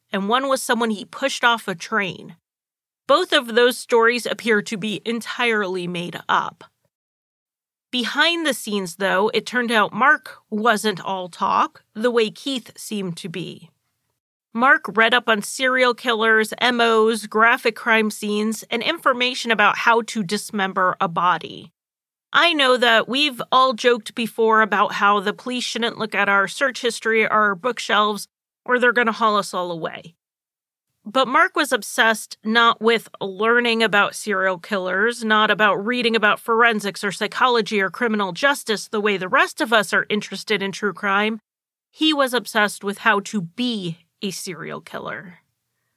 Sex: female